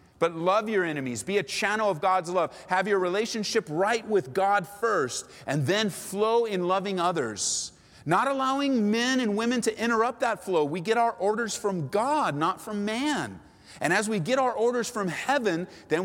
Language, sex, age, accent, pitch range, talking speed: English, male, 40-59, American, 165-215 Hz, 185 wpm